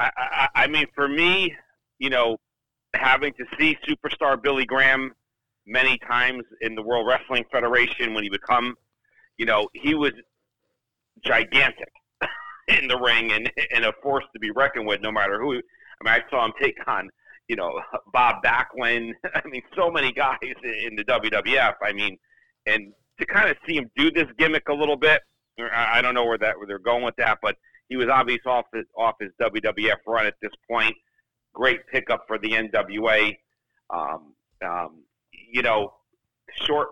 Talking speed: 175 wpm